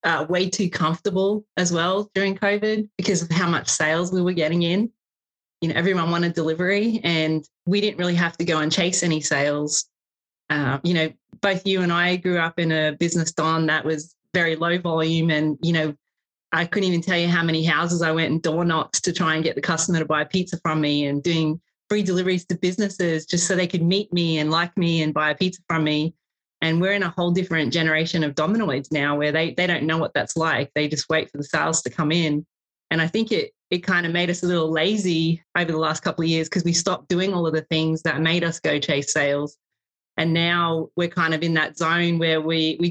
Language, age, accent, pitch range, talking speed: English, 30-49, Australian, 160-180 Hz, 240 wpm